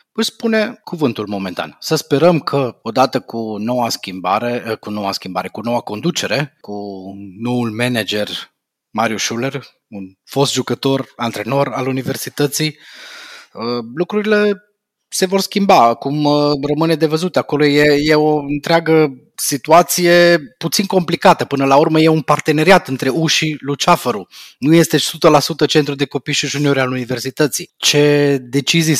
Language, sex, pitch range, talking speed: Romanian, male, 120-155 Hz, 135 wpm